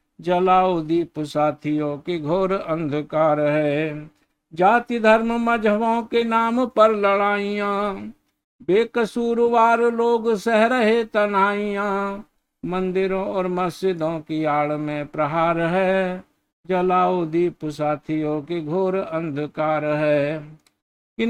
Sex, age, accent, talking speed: male, 60-79, native, 85 wpm